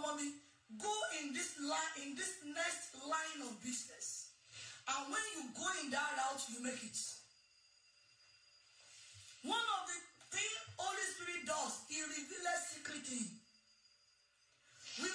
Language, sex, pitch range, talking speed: English, female, 285-360 Hz, 125 wpm